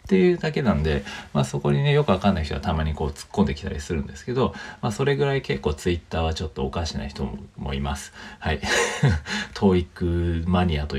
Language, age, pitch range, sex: Japanese, 40-59, 70-105 Hz, male